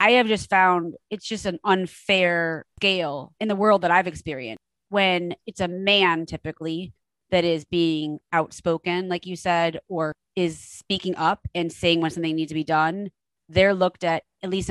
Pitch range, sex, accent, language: 165-190 Hz, female, American, English